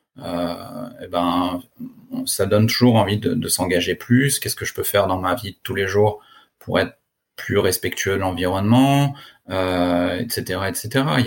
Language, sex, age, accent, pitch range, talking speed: French, male, 30-49, French, 105-130 Hz, 175 wpm